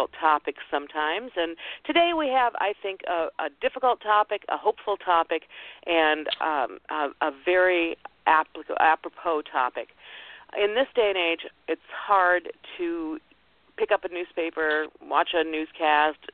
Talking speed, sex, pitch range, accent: 135 wpm, female, 135-165 Hz, American